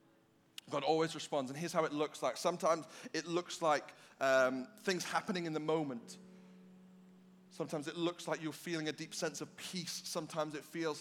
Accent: British